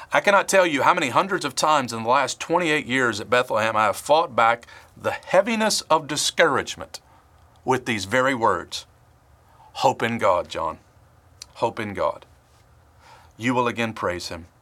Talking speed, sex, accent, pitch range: 165 wpm, male, American, 100-130 Hz